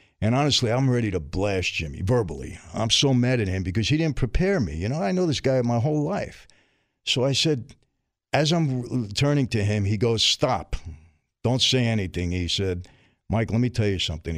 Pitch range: 90-120 Hz